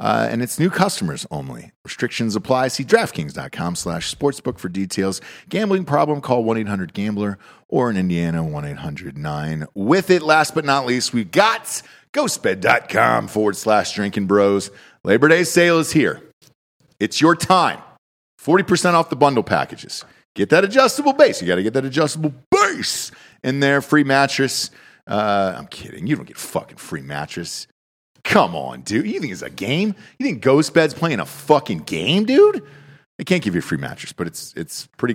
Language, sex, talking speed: English, male, 170 wpm